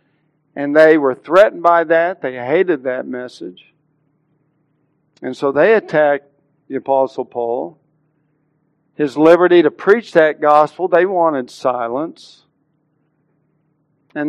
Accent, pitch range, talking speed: American, 150-180 Hz, 115 wpm